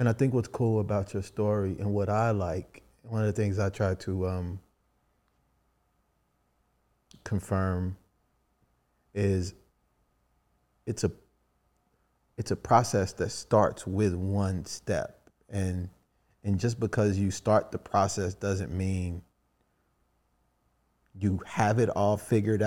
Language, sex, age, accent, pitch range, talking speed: English, male, 30-49, American, 95-115 Hz, 125 wpm